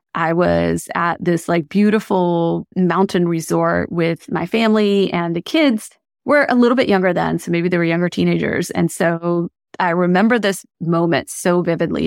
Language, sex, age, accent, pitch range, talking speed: English, female, 30-49, American, 170-220 Hz, 170 wpm